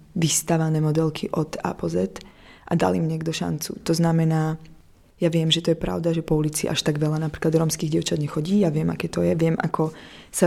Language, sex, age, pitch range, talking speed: Czech, female, 20-39, 160-180 Hz, 205 wpm